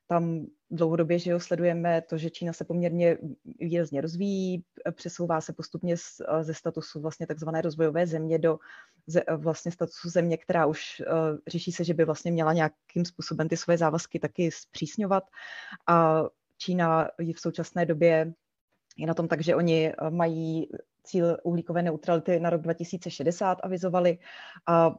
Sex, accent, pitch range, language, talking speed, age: female, native, 160-175 Hz, Czech, 150 wpm, 20-39